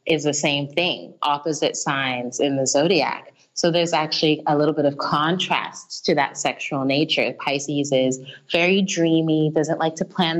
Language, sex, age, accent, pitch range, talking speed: English, female, 20-39, American, 135-165 Hz, 165 wpm